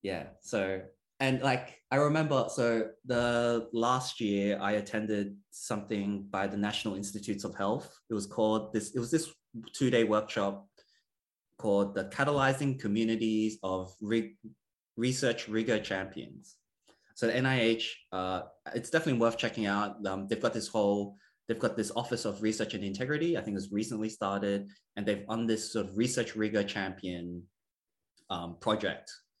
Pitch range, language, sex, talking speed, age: 95-115 Hz, English, male, 155 wpm, 20-39